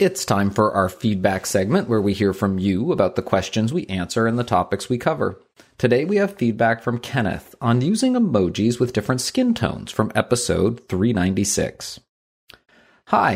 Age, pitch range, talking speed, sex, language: 30-49, 100-130 Hz, 165 wpm, male, English